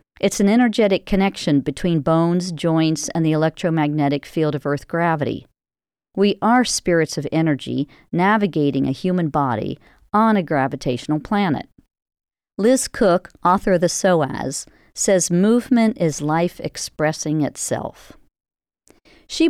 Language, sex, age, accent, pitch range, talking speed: English, female, 50-69, American, 155-195 Hz, 125 wpm